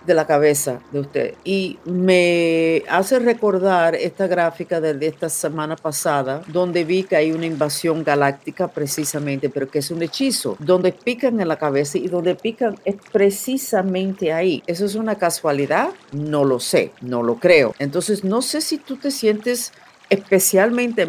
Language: Spanish